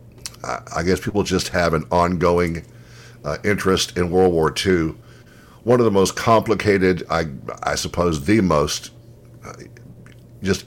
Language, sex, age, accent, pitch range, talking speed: English, male, 60-79, American, 75-105 Hz, 140 wpm